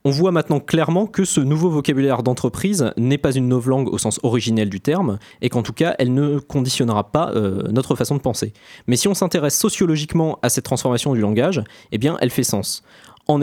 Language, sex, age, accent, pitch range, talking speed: French, male, 20-39, French, 120-165 Hz, 215 wpm